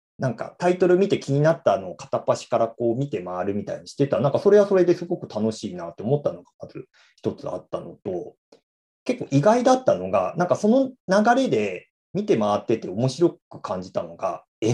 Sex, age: male, 40-59